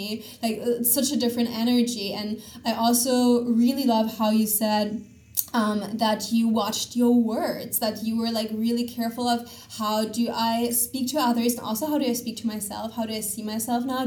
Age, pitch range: 20-39, 215-235 Hz